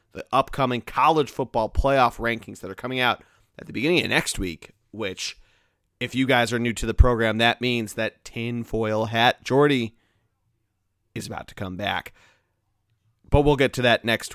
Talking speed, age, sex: 180 wpm, 30-49, male